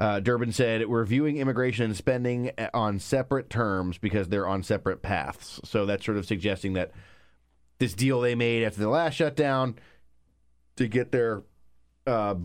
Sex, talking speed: male, 165 wpm